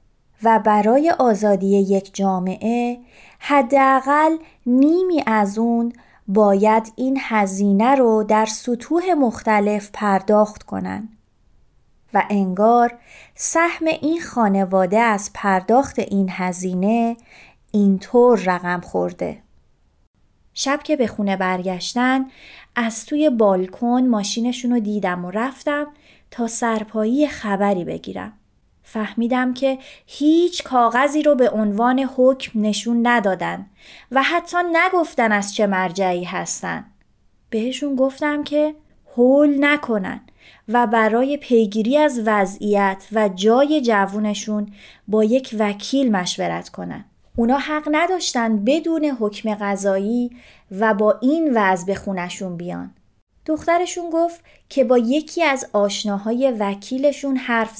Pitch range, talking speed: 200-270 Hz, 105 wpm